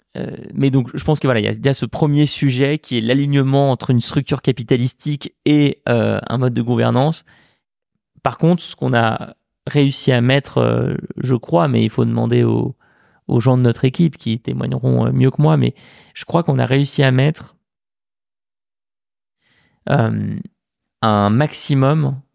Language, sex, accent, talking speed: French, male, French, 160 wpm